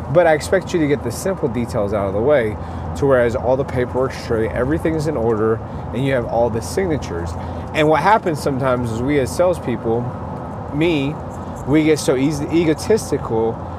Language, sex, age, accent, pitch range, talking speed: English, male, 30-49, American, 120-160 Hz, 185 wpm